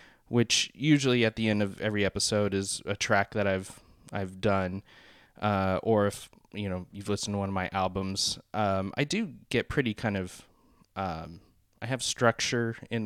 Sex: male